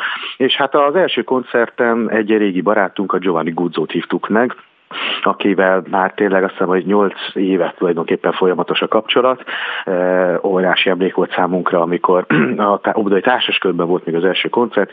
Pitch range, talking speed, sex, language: 90-105 Hz, 155 wpm, male, Hungarian